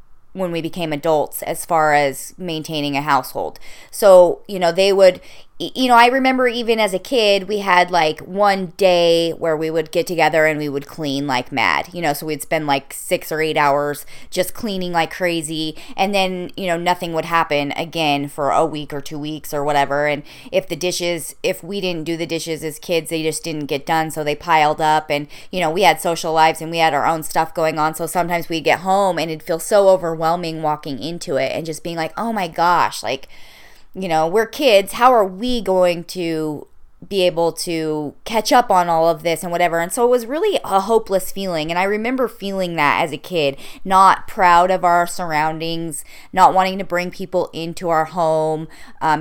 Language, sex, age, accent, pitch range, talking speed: English, female, 20-39, American, 155-190 Hz, 215 wpm